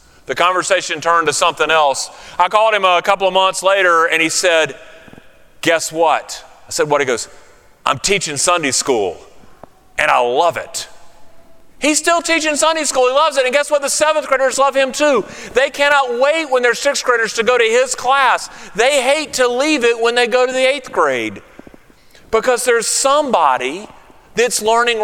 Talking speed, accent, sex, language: 185 wpm, American, male, English